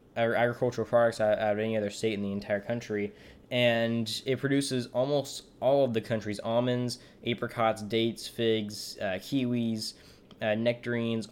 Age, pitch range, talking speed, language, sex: 10-29, 110-125 Hz, 145 wpm, English, male